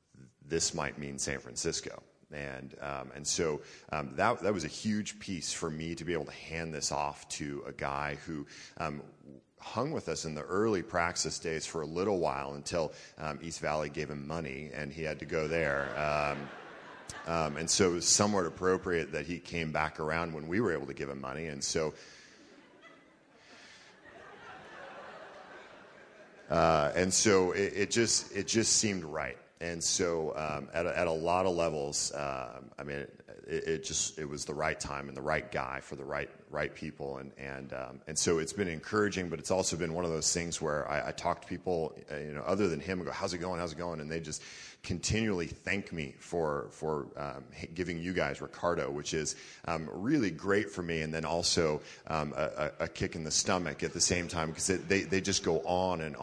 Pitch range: 70-90 Hz